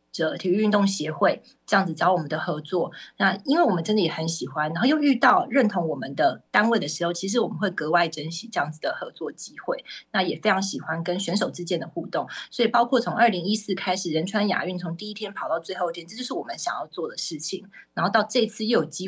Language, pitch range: Chinese, 175-230 Hz